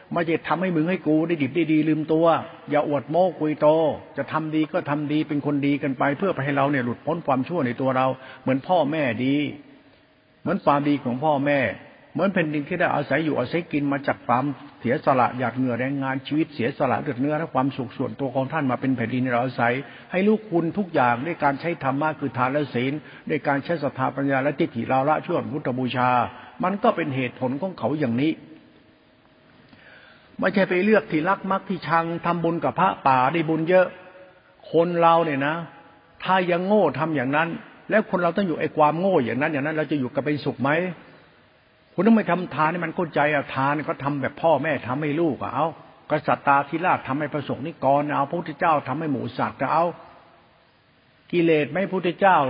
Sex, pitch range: male, 135-170 Hz